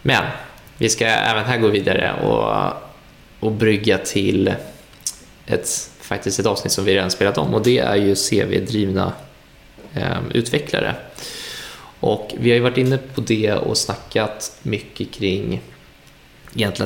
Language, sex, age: Swedish, male, 20-39